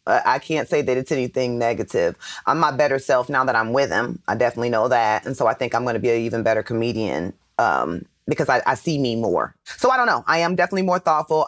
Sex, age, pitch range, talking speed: female, 30-49, 115-135 Hz, 240 wpm